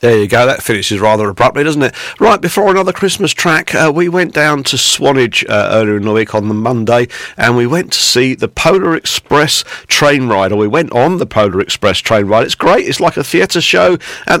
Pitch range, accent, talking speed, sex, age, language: 110-155 Hz, British, 230 wpm, male, 40-59, English